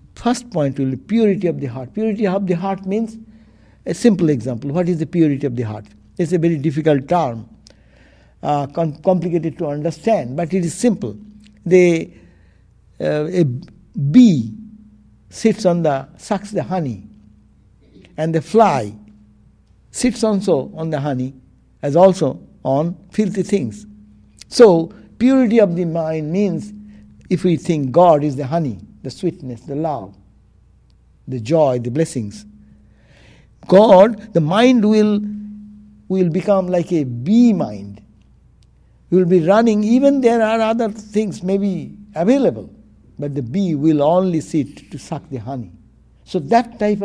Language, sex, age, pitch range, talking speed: English, male, 60-79, 135-205 Hz, 145 wpm